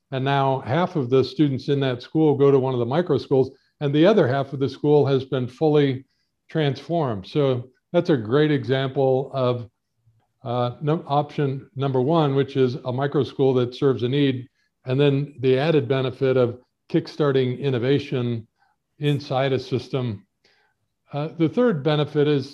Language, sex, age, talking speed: English, male, 50-69, 165 wpm